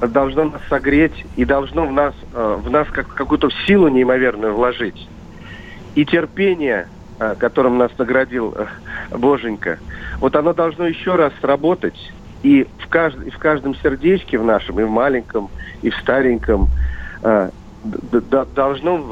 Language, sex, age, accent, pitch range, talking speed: Russian, male, 50-69, native, 120-145 Hz, 120 wpm